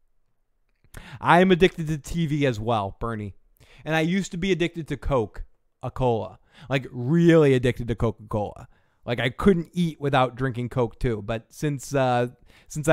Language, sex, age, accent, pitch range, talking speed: English, male, 20-39, American, 120-145 Hz, 160 wpm